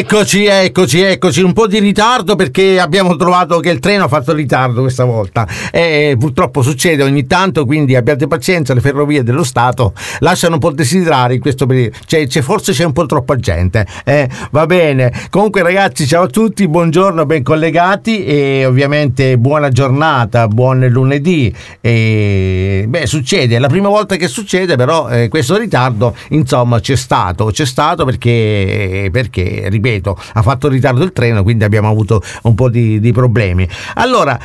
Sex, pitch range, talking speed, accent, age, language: male, 115-160 Hz, 165 wpm, native, 50-69, Italian